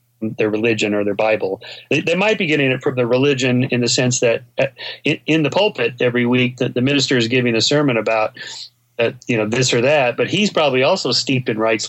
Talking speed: 225 wpm